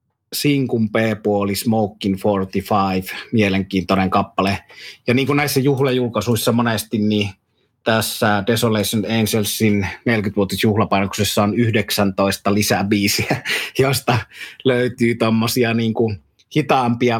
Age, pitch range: 30-49, 100-115 Hz